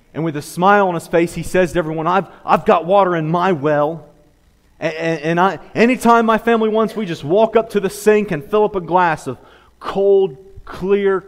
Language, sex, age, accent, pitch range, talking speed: English, male, 30-49, American, 125-175 Hz, 205 wpm